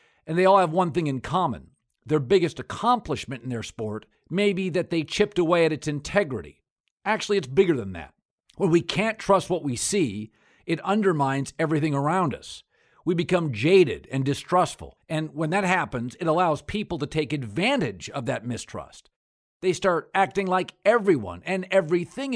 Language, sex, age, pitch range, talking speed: English, male, 50-69, 140-200 Hz, 175 wpm